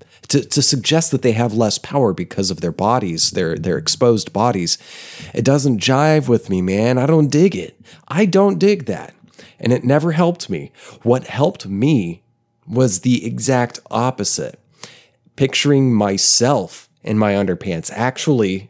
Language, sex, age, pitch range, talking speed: English, male, 30-49, 105-140 Hz, 155 wpm